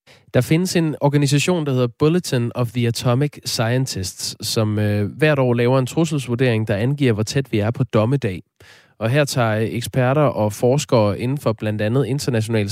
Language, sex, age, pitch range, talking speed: Danish, male, 20-39, 105-135 Hz, 175 wpm